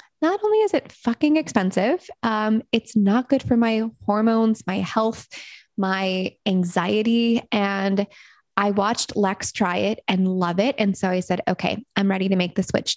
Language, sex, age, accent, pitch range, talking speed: English, female, 20-39, American, 195-230 Hz, 170 wpm